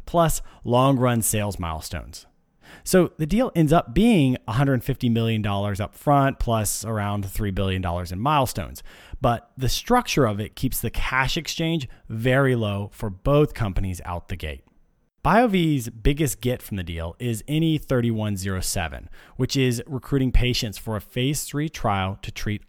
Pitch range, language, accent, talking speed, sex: 100-140 Hz, English, American, 150 wpm, male